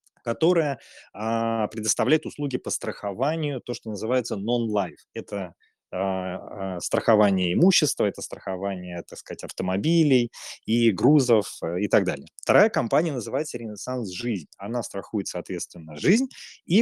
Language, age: Russian, 20-39